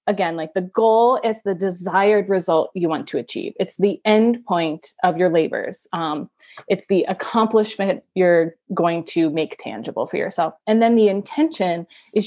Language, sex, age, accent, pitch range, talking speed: English, female, 30-49, American, 175-215 Hz, 170 wpm